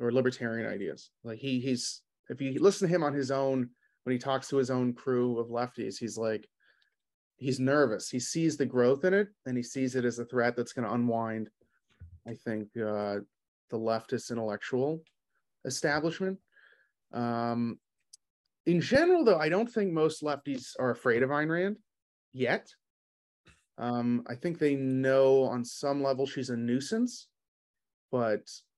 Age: 30-49